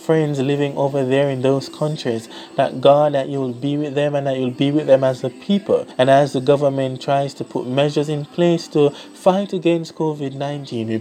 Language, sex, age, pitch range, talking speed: English, male, 20-39, 135-160 Hz, 215 wpm